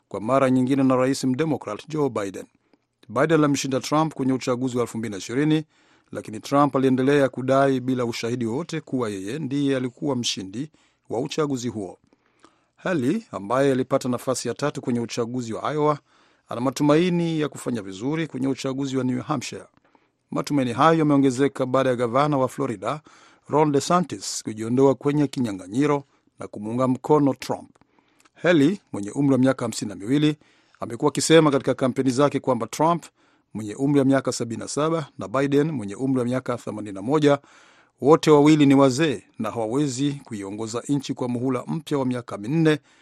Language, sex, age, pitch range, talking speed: Swahili, male, 50-69, 125-145 Hz, 150 wpm